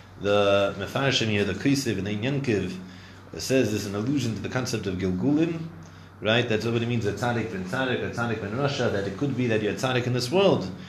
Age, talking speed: 30-49, 210 wpm